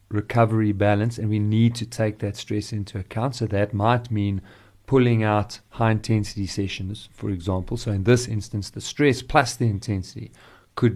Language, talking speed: English, 175 wpm